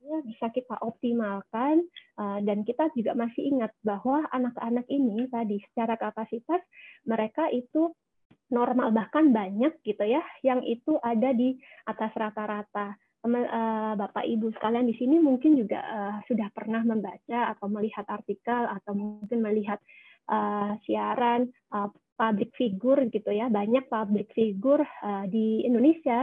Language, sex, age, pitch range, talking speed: Indonesian, female, 20-39, 215-255 Hz, 120 wpm